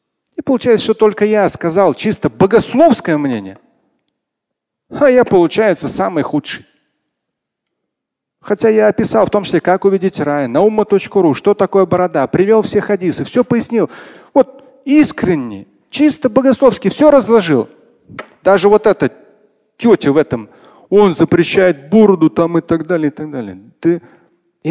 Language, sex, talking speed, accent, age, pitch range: Russian, male, 135 wpm, native, 40-59, 155-225 Hz